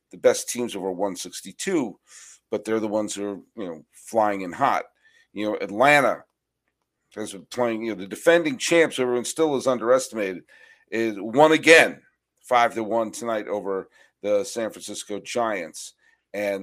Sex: male